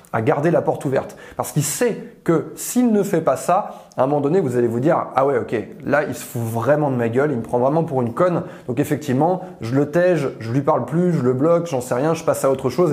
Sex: male